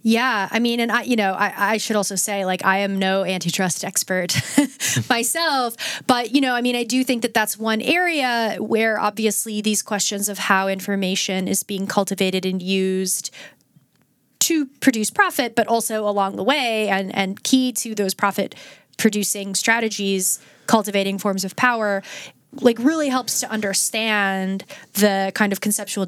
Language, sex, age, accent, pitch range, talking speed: English, female, 20-39, American, 190-225 Hz, 165 wpm